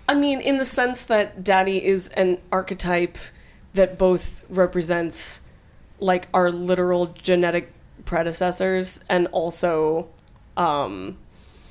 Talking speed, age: 110 wpm, 20-39